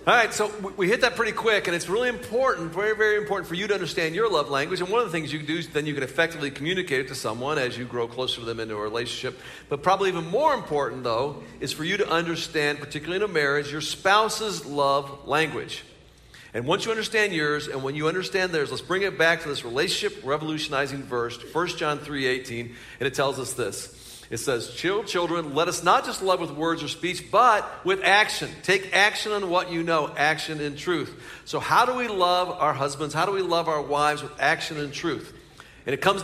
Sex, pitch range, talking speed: male, 150-195 Hz, 230 wpm